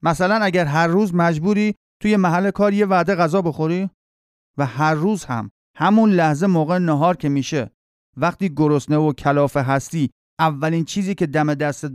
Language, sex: Persian, male